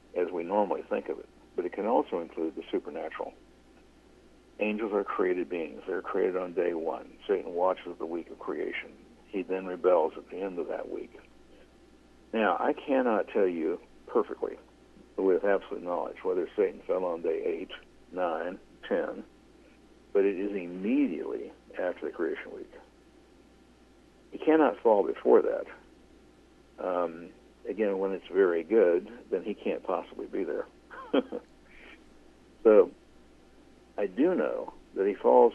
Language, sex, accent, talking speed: English, male, American, 145 wpm